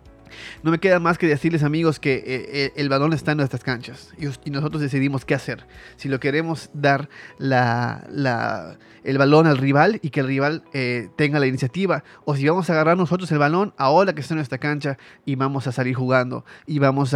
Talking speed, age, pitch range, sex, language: 205 wpm, 30-49, 130-165 Hz, male, Spanish